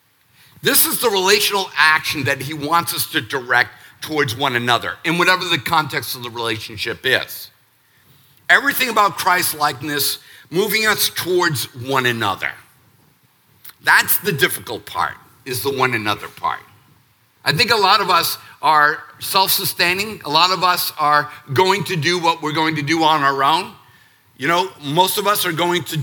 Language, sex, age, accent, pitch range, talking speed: English, male, 50-69, American, 130-180 Hz, 165 wpm